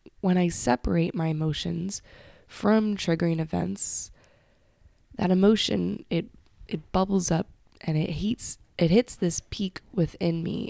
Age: 20-39